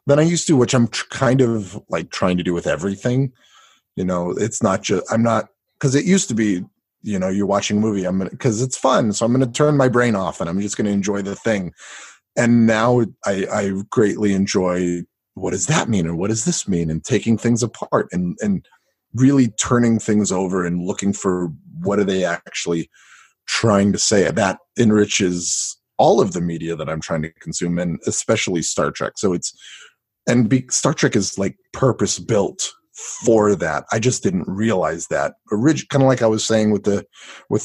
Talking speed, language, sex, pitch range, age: 205 wpm, English, male, 95-120 Hz, 30-49